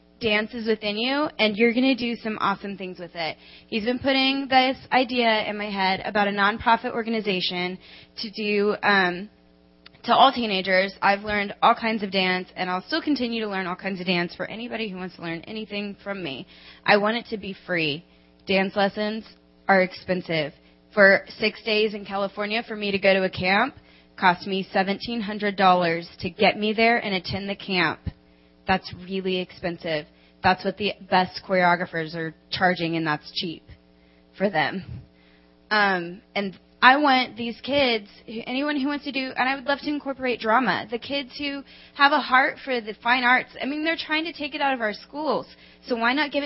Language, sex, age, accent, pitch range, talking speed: English, female, 20-39, American, 185-240 Hz, 190 wpm